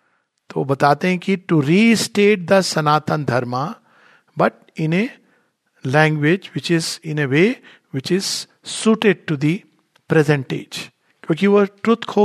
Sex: male